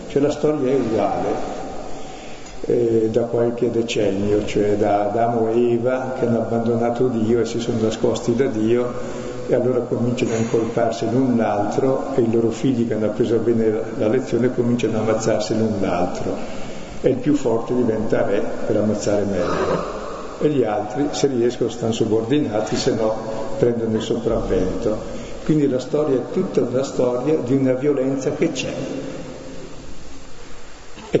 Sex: male